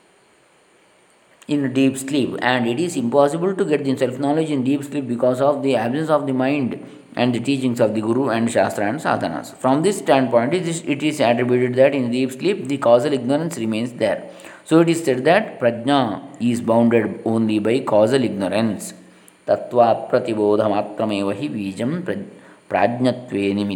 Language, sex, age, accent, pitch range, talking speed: English, male, 20-39, Indian, 115-140 Hz, 150 wpm